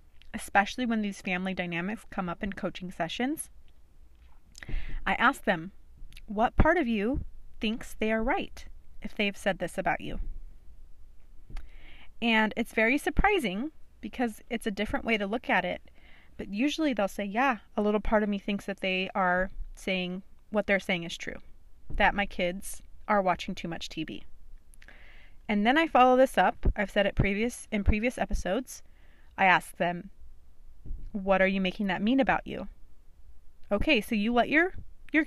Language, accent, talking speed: English, American, 165 wpm